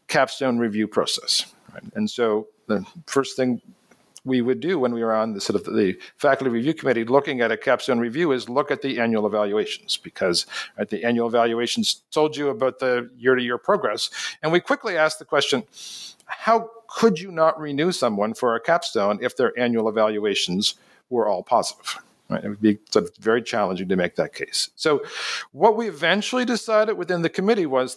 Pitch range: 120-170 Hz